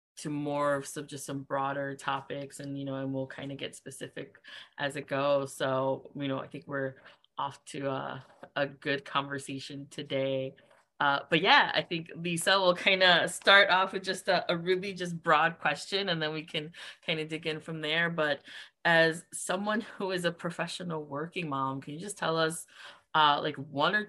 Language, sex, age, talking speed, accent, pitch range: English, female, 20-39, 200 wpm, American, 140-170 Hz